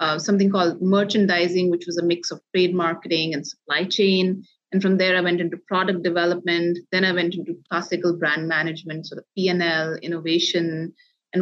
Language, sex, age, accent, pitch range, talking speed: English, female, 30-49, Indian, 170-200 Hz, 180 wpm